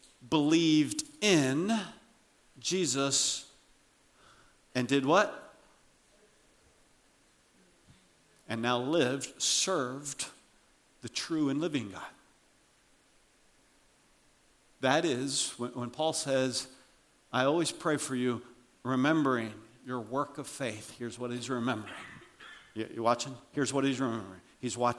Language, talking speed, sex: English, 100 wpm, male